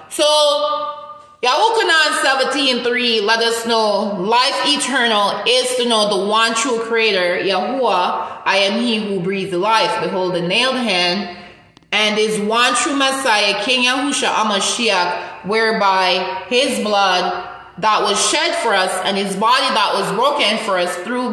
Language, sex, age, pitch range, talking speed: English, female, 20-39, 190-270 Hz, 150 wpm